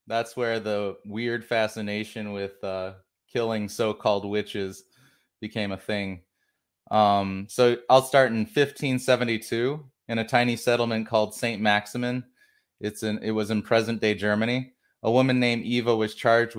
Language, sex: English, male